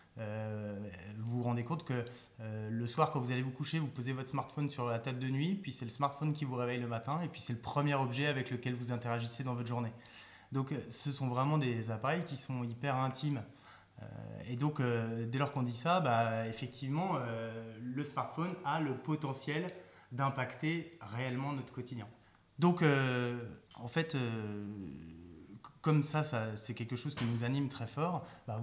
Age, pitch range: 20-39, 115-135 Hz